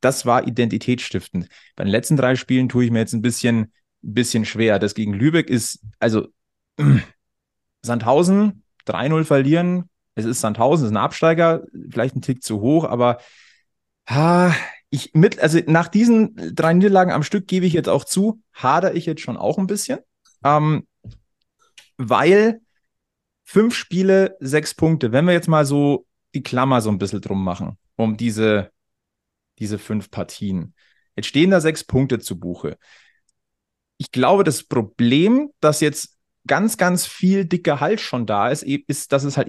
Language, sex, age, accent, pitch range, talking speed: German, male, 30-49, German, 115-175 Hz, 160 wpm